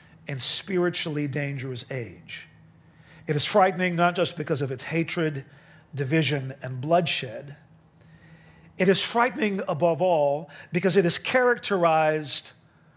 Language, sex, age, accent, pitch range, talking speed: English, male, 50-69, American, 150-180 Hz, 115 wpm